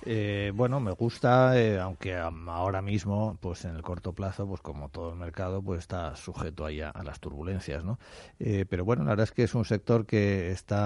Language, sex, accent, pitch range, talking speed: Spanish, male, Spanish, 85-100 Hz, 215 wpm